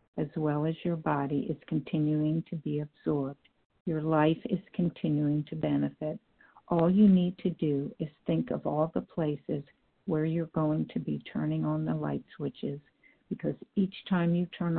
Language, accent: English, American